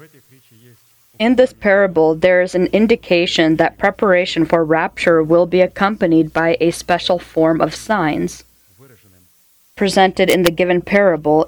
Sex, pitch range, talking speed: female, 160-185 Hz, 130 wpm